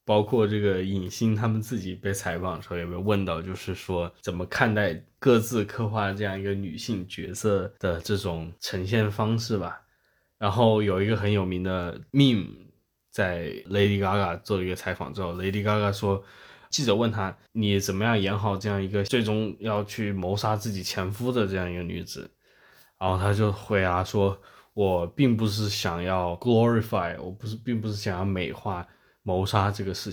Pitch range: 95-115 Hz